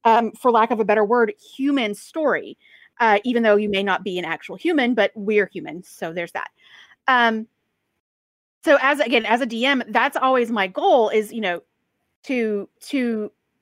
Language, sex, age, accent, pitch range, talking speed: English, female, 30-49, American, 205-265 Hz, 185 wpm